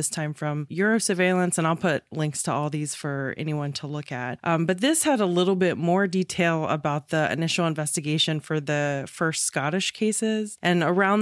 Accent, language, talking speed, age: American, English, 200 wpm, 20-39